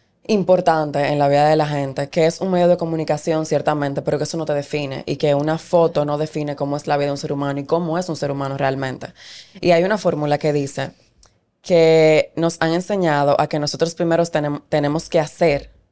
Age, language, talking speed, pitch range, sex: 20-39, Spanish, 220 wpm, 150-175 Hz, female